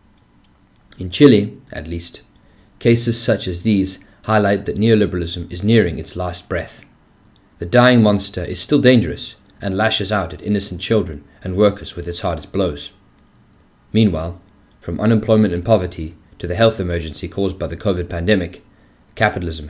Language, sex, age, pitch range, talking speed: English, male, 30-49, 85-105 Hz, 150 wpm